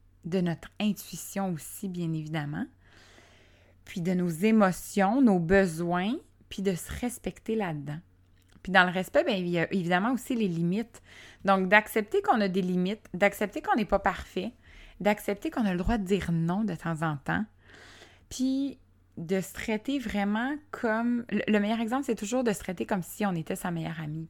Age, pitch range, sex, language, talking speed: 20-39, 160-215 Hz, female, French, 180 wpm